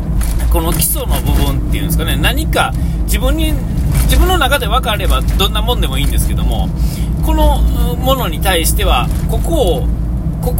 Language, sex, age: Japanese, male, 40-59